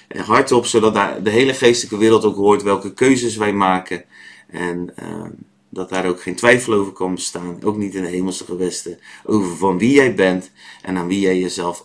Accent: Dutch